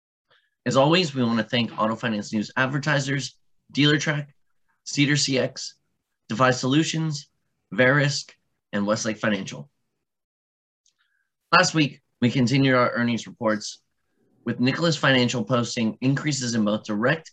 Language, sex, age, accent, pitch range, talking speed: English, male, 20-39, American, 105-130 Hz, 120 wpm